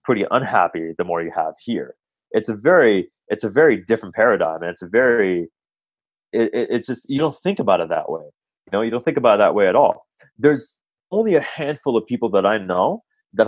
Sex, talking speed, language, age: male, 225 wpm, English, 20-39